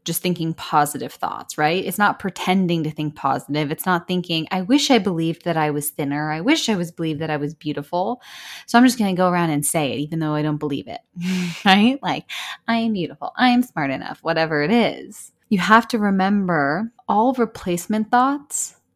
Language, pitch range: English, 155-215 Hz